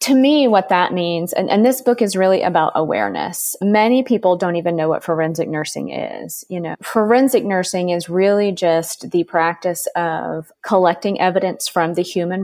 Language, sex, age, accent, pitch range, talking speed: English, female, 30-49, American, 160-185 Hz, 180 wpm